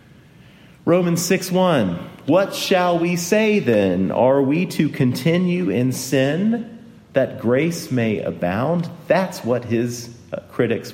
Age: 40-59